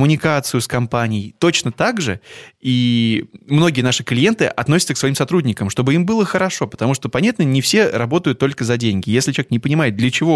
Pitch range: 115-155 Hz